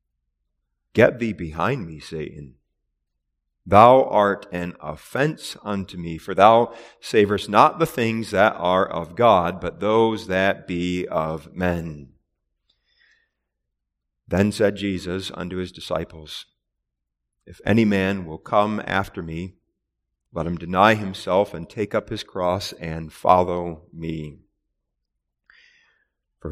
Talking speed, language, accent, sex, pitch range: 120 wpm, English, American, male, 80-105 Hz